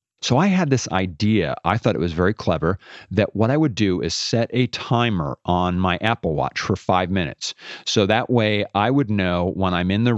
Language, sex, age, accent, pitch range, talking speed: English, male, 40-59, American, 90-110 Hz, 220 wpm